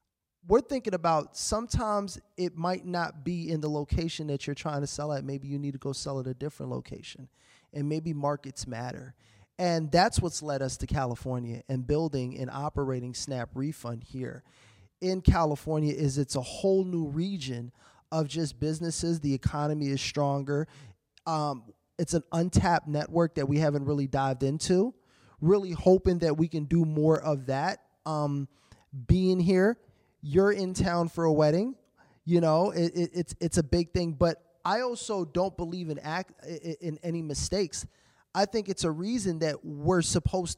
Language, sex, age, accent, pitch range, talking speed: English, male, 20-39, American, 140-175 Hz, 170 wpm